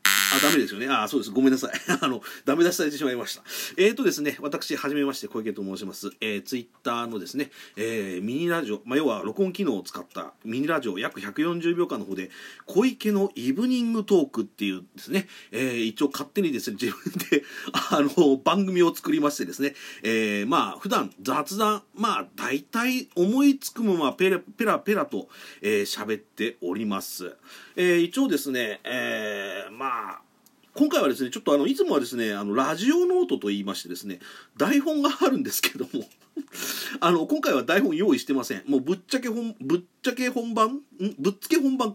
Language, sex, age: Japanese, male, 40-59